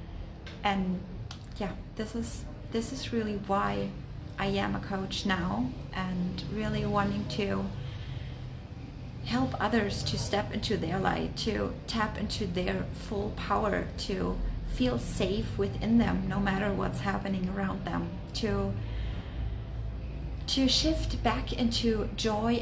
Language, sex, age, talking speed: English, female, 30-49, 125 wpm